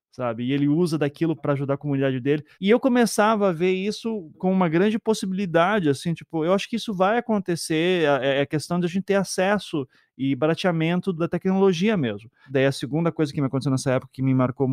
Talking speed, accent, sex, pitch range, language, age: 200 wpm, Brazilian, male, 135-180 Hz, Portuguese, 20-39